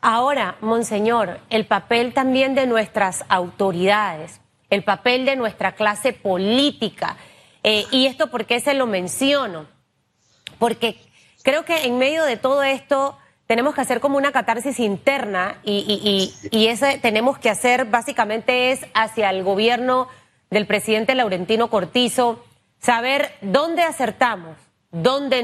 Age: 30-49